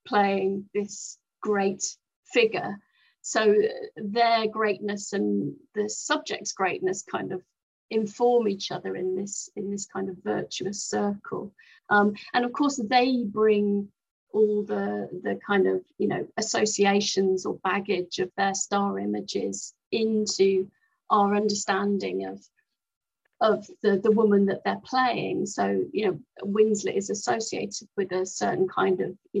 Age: 30-49